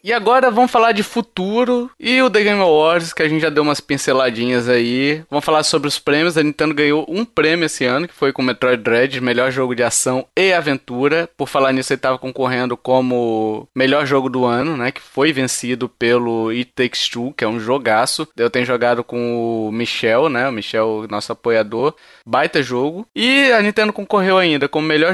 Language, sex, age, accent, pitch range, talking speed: Portuguese, male, 20-39, Brazilian, 125-160 Hz, 205 wpm